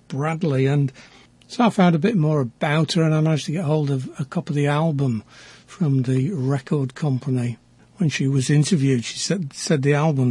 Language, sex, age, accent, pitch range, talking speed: English, male, 60-79, British, 135-160 Hz, 205 wpm